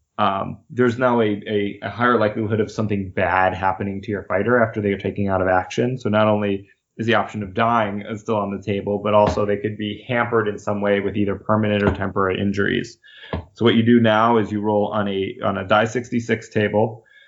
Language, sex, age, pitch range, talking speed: English, male, 20-39, 105-120 Hz, 220 wpm